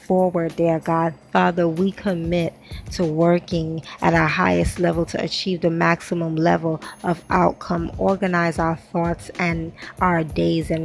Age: 20-39